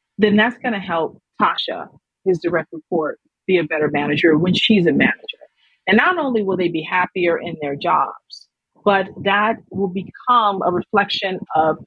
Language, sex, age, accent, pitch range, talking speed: English, female, 40-59, American, 175-225 Hz, 165 wpm